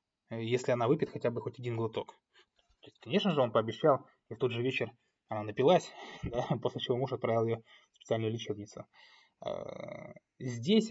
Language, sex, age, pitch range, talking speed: Russian, male, 20-39, 115-135 Hz, 170 wpm